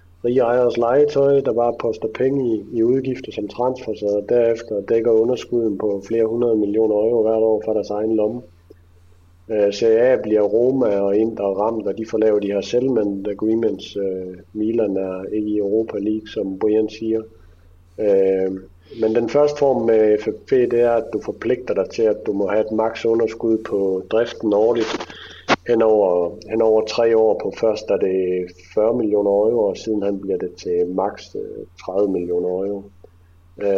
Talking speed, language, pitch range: 175 wpm, Danish, 95-120 Hz